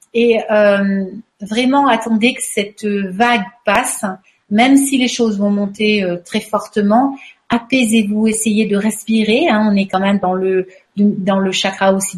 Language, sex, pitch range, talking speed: French, female, 200-245 Hz, 165 wpm